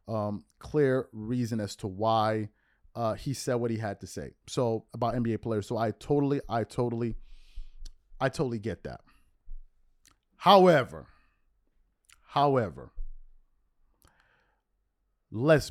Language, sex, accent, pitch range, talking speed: English, male, American, 100-145 Hz, 115 wpm